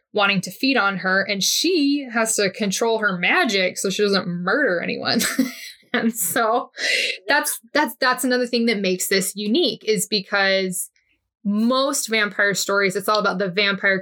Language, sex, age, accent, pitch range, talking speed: English, female, 20-39, American, 190-240 Hz, 165 wpm